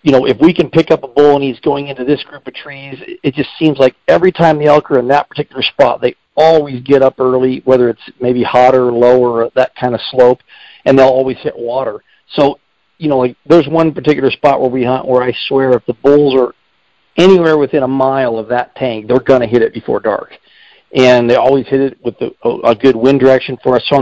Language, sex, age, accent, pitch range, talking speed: English, male, 50-69, American, 120-140 Hz, 240 wpm